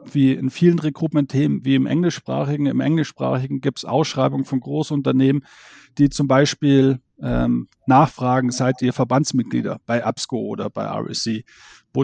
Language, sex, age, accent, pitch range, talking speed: German, male, 40-59, German, 125-145 Hz, 140 wpm